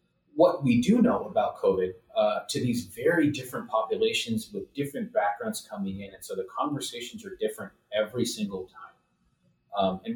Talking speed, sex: 165 wpm, male